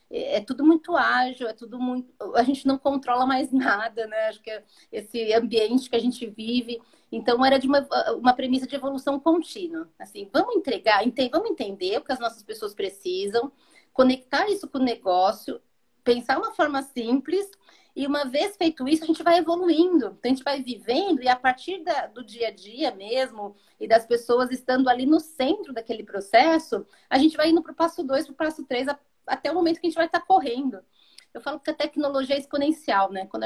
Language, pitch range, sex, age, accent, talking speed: Portuguese, 235-315 Hz, female, 40-59, Brazilian, 205 wpm